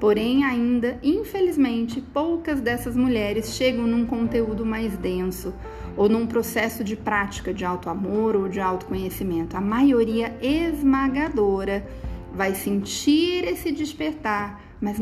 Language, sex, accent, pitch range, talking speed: Portuguese, female, Brazilian, 200-265 Hz, 115 wpm